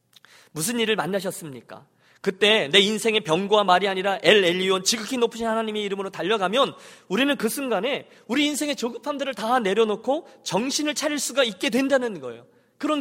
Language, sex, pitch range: Korean, male, 185-270 Hz